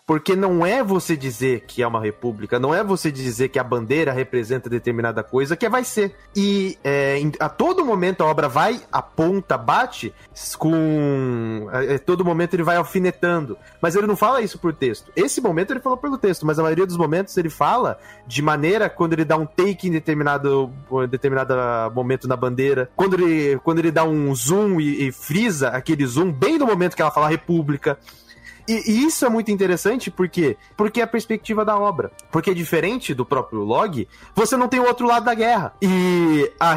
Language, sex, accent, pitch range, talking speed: Portuguese, male, Brazilian, 135-190 Hz, 195 wpm